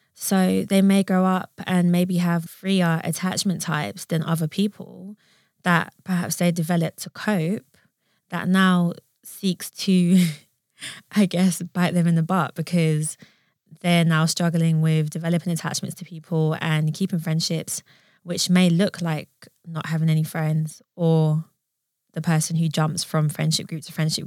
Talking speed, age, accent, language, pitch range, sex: 150 wpm, 20-39, British, English, 160-190 Hz, female